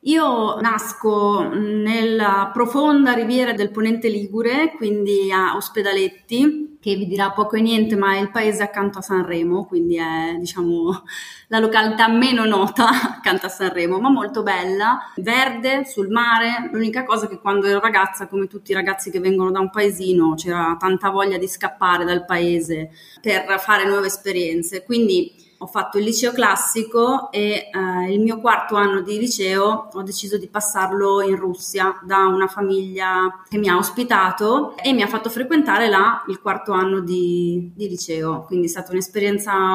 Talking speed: 165 wpm